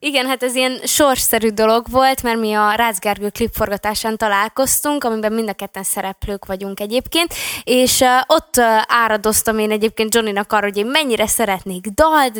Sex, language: female, Hungarian